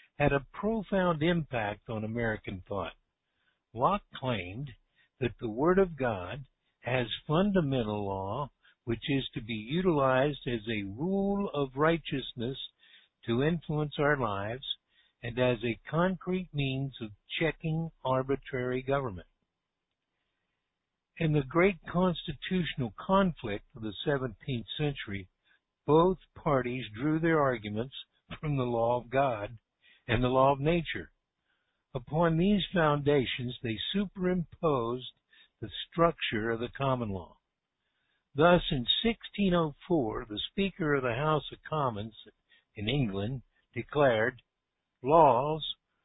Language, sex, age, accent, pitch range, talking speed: English, male, 60-79, American, 120-160 Hz, 115 wpm